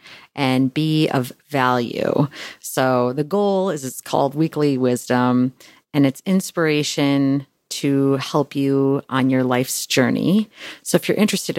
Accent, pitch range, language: American, 135-165 Hz, English